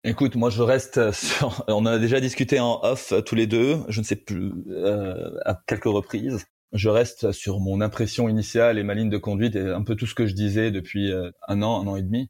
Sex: male